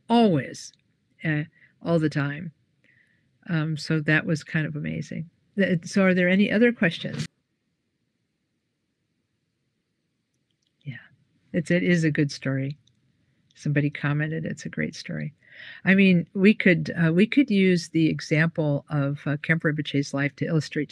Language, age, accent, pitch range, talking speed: English, 50-69, American, 150-180 Hz, 140 wpm